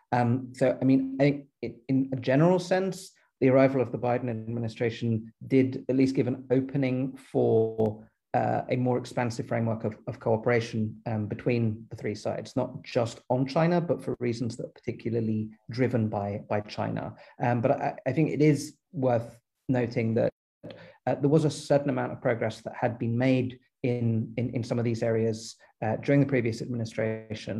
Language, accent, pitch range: Czech, British, 115-135 Hz